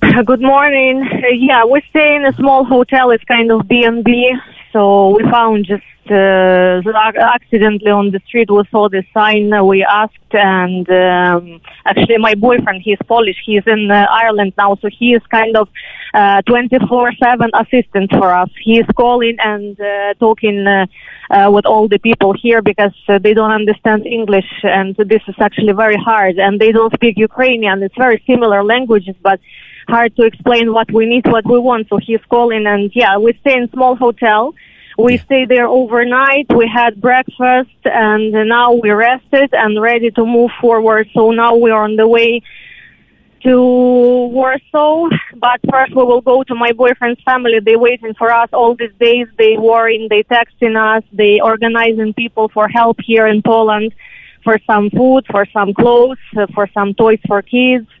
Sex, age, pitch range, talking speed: female, 20-39, 210-245 Hz, 175 wpm